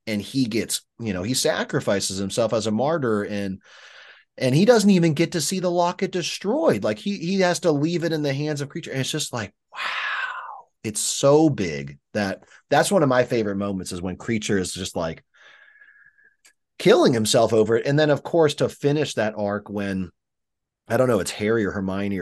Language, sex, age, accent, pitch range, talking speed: English, male, 30-49, American, 95-145 Hz, 205 wpm